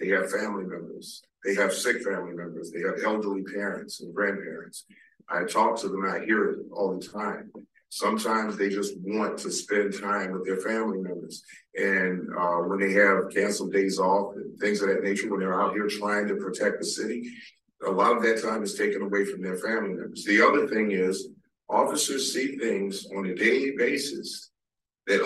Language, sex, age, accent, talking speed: English, male, 50-69, American, 195 wpm